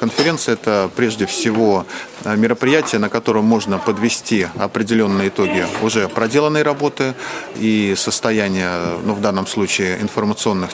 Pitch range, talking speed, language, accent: 95-125 Hz, 125 wpm, Russian, native